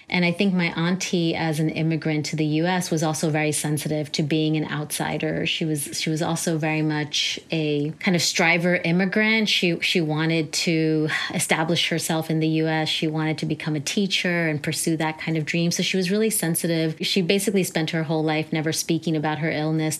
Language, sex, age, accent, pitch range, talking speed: English, female, 30-49, American, 155-180 Hz, 205 wpm